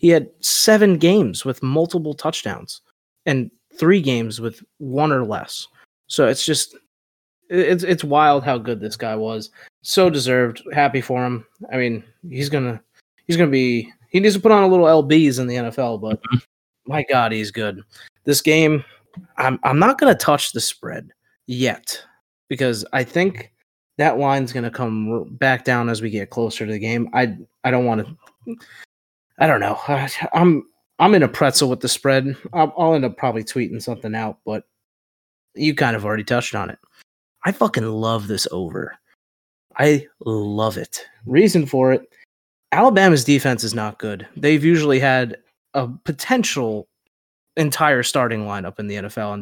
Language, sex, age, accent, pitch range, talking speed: English, male, 20-39, American, 110-150 Hz, 175 wpm